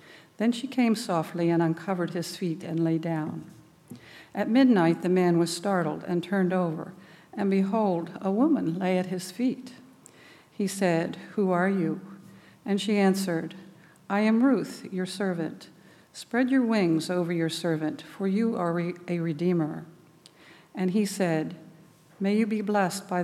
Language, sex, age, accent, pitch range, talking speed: English, female, 60-79, American, 165-195 Hz, 155 wpm